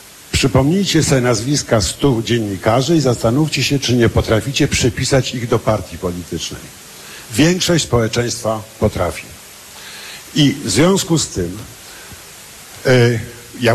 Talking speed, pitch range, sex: 110 wpm, 115-145 Hz, male